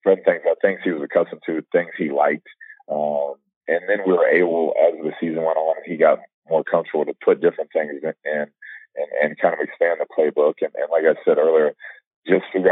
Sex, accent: male, American